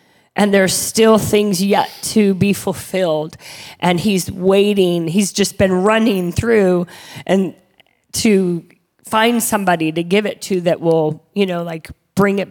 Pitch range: 175-205 Hz